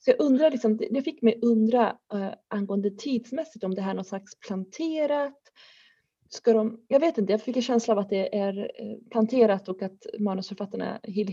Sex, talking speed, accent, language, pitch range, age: female, 185 wpm, native, Swedish, 205-235 Hz, 30-49